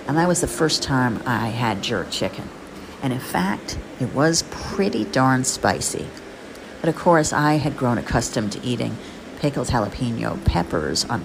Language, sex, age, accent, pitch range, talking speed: English, female, 50-69, American, 125-160 Hz, 165 wpm